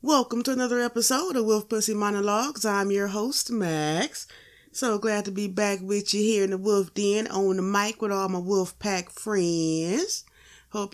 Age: 30-49